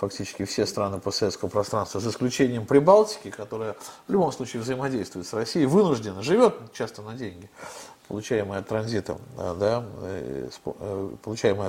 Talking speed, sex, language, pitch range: 125 wpm, male, Russian, 100-125 Hz